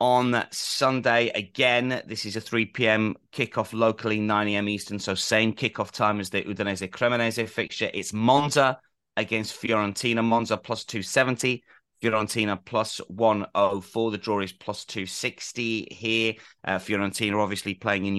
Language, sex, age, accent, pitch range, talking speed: English, male, 30-49, British, 105-120 Hz, 130 wpm